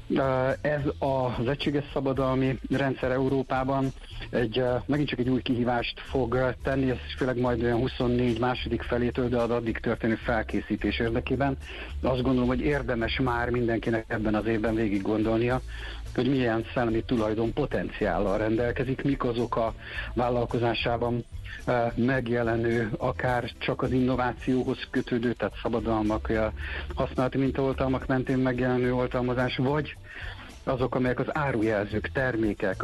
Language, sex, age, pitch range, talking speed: Hungarian, male, 60-79, 110-130 Hz, 125 wpm